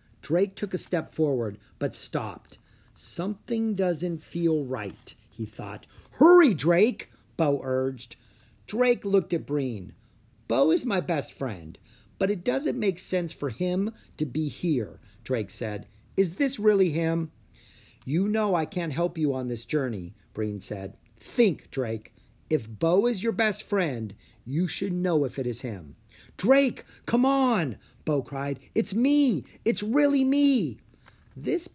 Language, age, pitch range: English, 50-69, 115-190 Hz